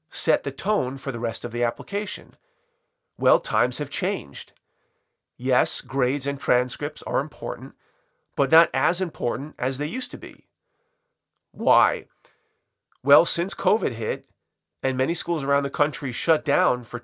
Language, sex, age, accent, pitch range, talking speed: English, male, 40-59, American, 130-170 Hz, 150 wpm